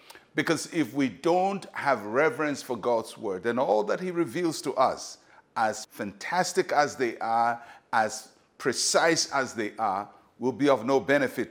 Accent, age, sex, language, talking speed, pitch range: Nigerian, 50-69, male, English, 160 wpm, 115-135 Hz